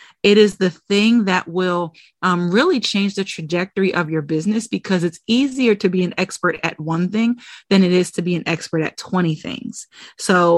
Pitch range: 175-220 Hz